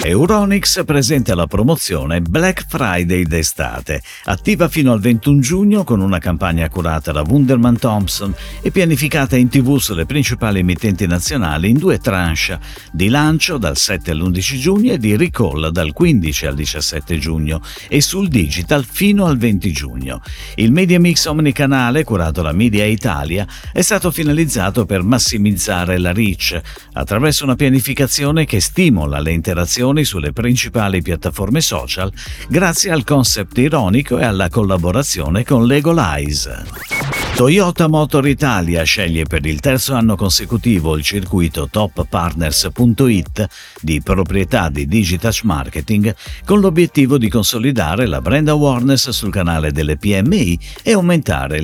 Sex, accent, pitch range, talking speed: male, native, 85-135 Hz, 135 wpm